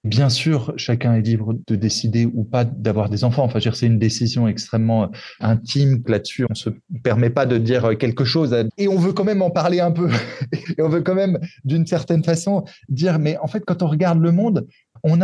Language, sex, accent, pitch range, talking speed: French, male, French, 120-165 Hz, 220 wpm